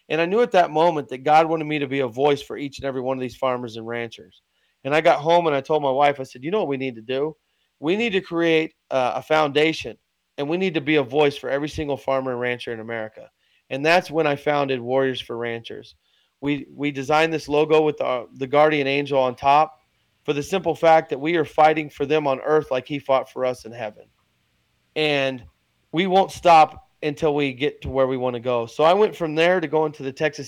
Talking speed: 245 wpm